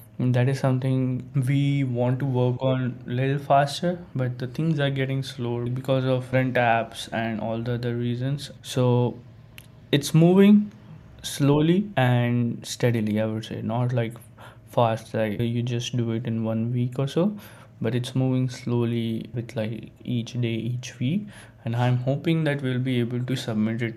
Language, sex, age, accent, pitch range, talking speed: English, male, 20-39, Indian, 115-135 Hz, 170 wpm